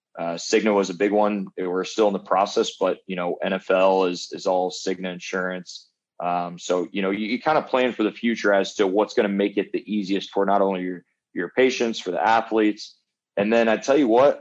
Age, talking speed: 20-39, 230 wpm